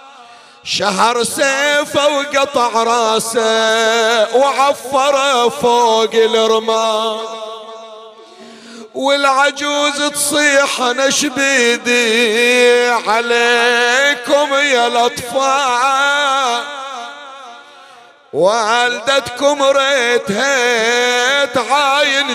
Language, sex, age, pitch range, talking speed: Arabic, male, 50-69, 225-275 Hz, 45 wpm